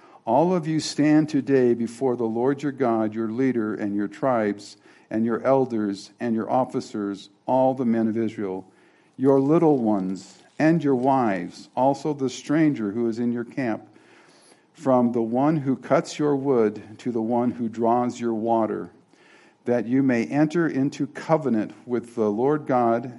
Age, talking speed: 50-69, 165 wpm